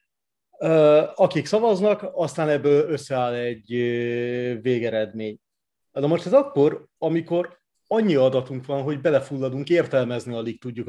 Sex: male